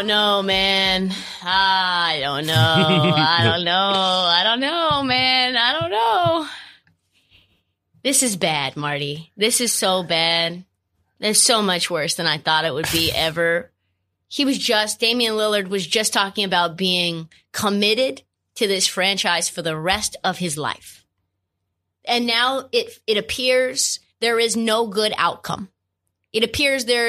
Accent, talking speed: American, 150 wpm